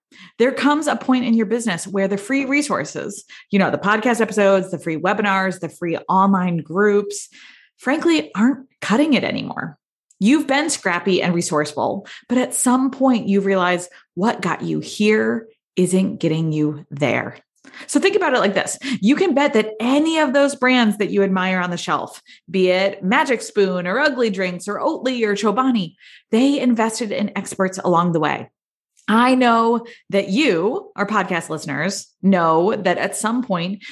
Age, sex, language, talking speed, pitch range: 20-39, female, English, 170 wpm, 185-255 Hz